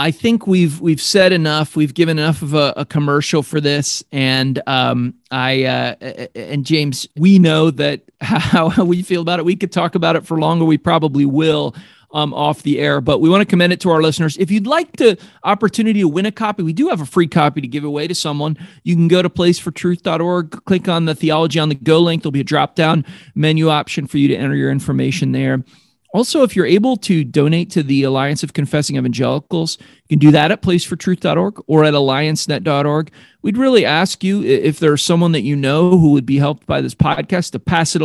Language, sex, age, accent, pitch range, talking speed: English, male, 40-59, American, 145-180 Hz, 220 wpm